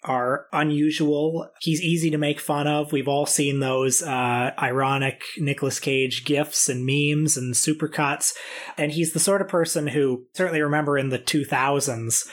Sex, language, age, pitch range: male, English, 30-49, 135-155 Hz